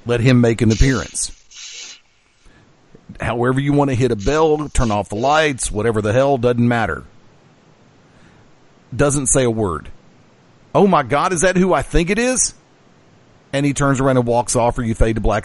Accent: American